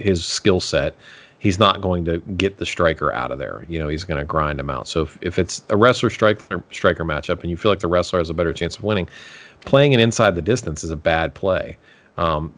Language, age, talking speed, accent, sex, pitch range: English, 40-59, 245 wpm, American, male, 80-100 Hz